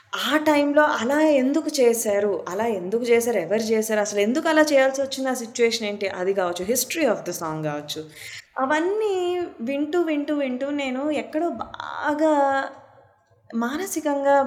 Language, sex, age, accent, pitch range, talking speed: Telugu, female, 20-39, native, 170-265 Hz, 135 wpm